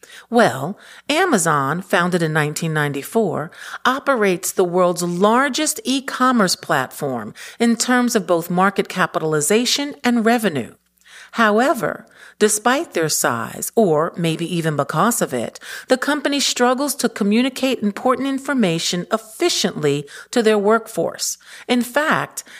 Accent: American